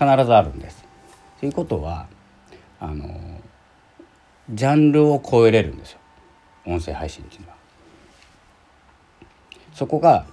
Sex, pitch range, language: male, 80-110 Hz, Japanese